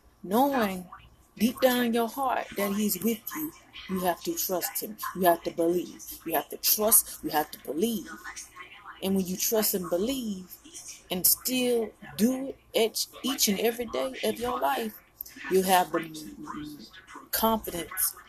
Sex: female